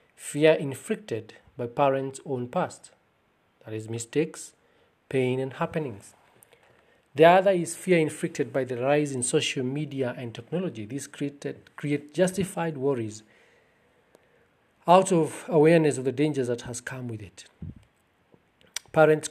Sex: male